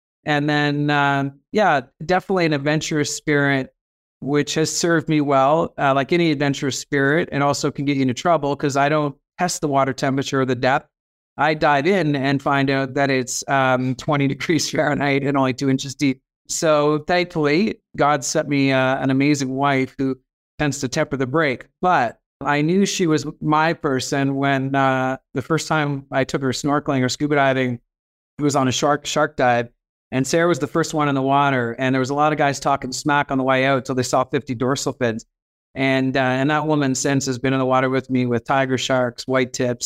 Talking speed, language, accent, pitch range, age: 210 wpm, English, American, 130-145 Hz, 30-49